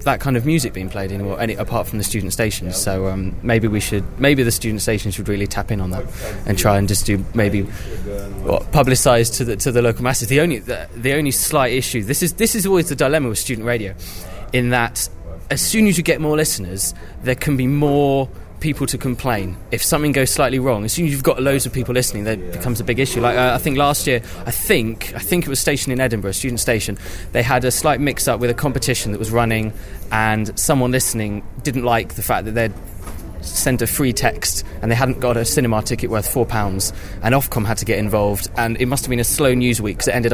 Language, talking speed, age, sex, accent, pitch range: English, 245 wpm, 20-39, male, British, 100-130 Hz